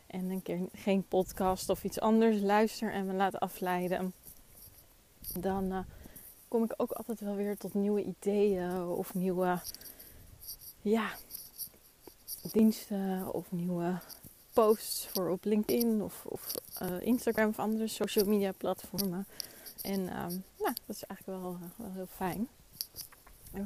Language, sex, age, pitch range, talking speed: Dutch, female, 20-39, 185-220 Hz, 130 wpm